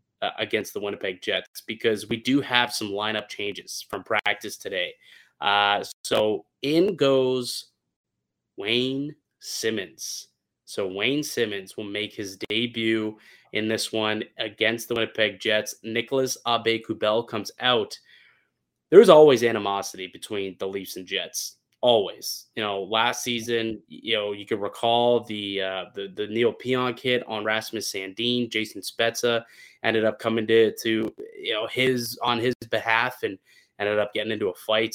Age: 20-39